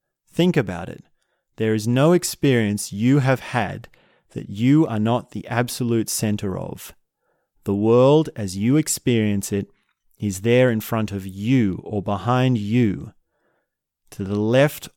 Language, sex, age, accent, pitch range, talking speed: English, male, 30-49, Australian, 100-125 Hz, 145 wpm